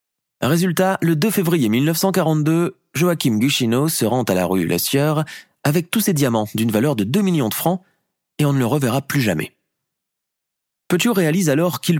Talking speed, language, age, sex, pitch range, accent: 175 wpm, French, 30-49, male, 115-175 Hz, French